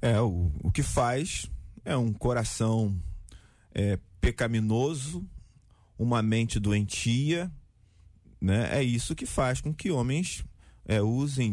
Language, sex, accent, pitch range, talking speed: Portuguese, male, Brazilian, 110-155 Hz, 110 wpm